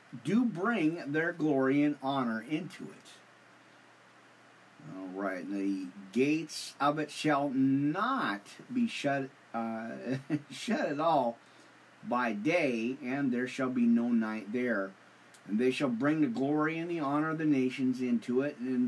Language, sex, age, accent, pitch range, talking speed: English, male, 40-59, American, 125-155 Hz, 145 wpm